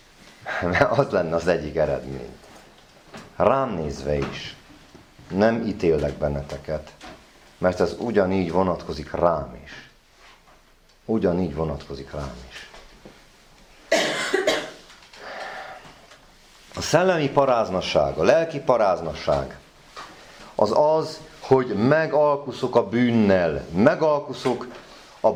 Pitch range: 110-170 Hz